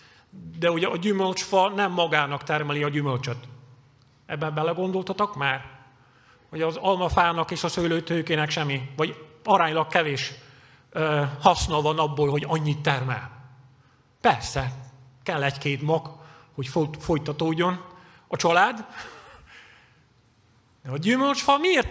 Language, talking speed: Hungarian, 110 wpm